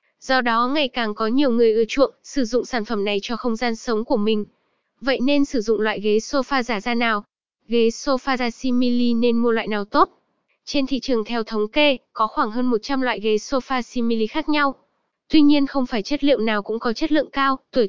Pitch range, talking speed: 220-265 Hz, 230 wpm